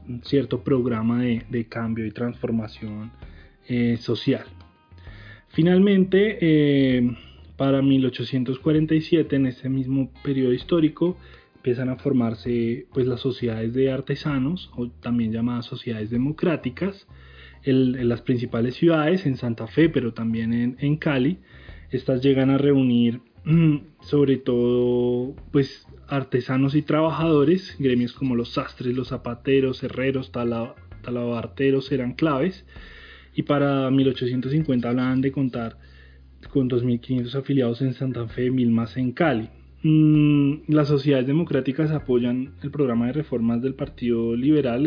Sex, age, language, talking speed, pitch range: male, 20-39, Spanish, 125 wpm, 120-140 Hz